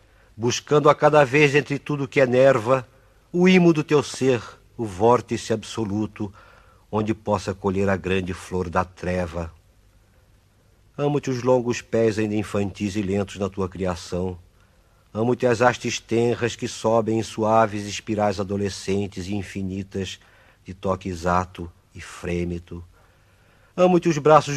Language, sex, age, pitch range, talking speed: Portuguese, male, 50-69, 95-120 Hz, 135 wpm